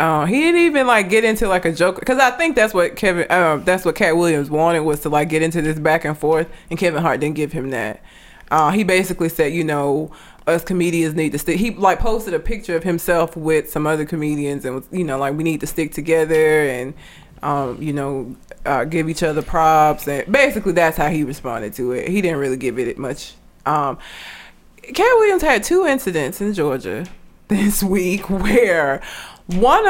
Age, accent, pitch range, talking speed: 20-39, American, 160-235 Hz, 210 wpm